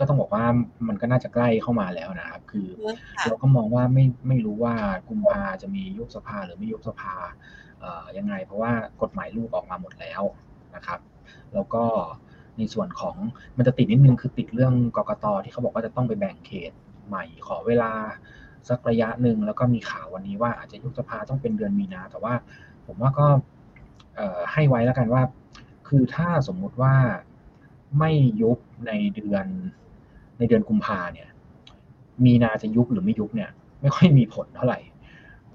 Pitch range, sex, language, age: 120-190 Hz, male, Thai, 20-39